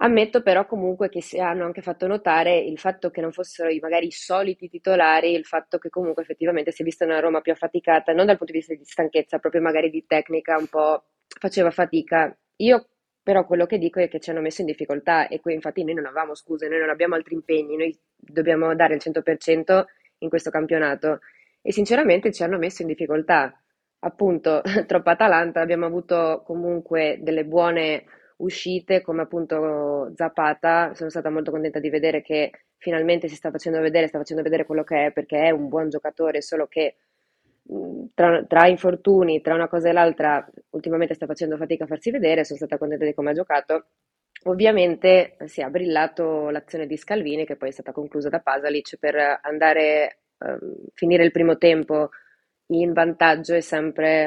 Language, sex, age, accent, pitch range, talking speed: Italian, female, 20-39, native, 155-170 Hz, 185 wpm